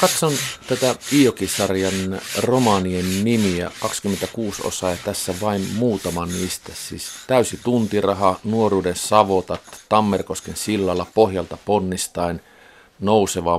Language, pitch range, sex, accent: Finnish, 90-105 Hz, male, native